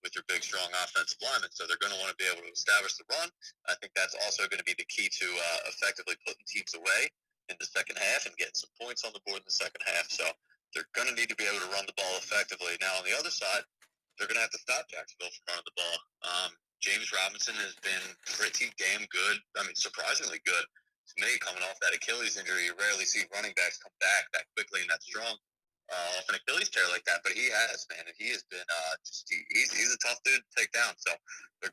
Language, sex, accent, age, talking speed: English, male, American, 30-49, 255 wpm